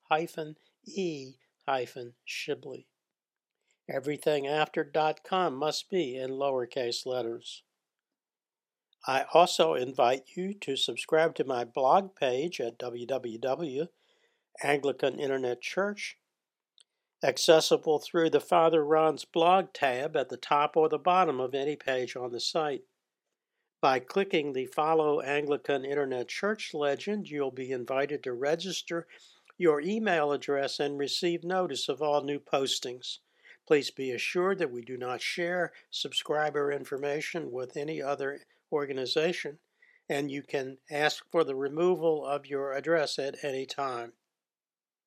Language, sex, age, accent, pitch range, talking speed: English, male, 60-79, American, 135-175 Hz, 125 wpm